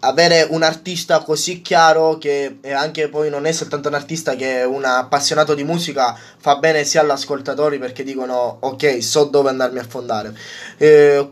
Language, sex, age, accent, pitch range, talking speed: Italian, male, 20-39, native, 140-170 Hz, 175 wpm